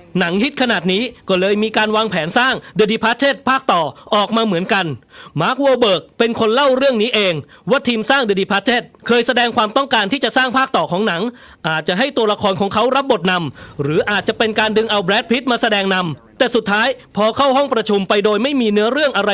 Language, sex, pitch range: English, male, 205-250 Hz